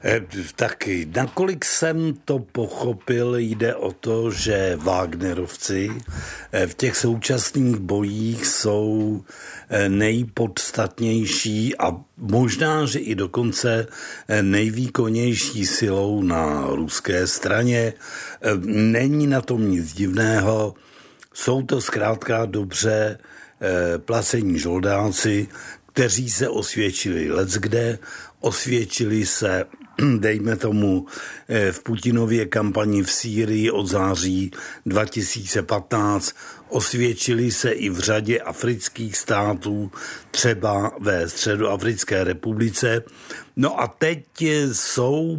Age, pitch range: 60-79, 105-120 Hz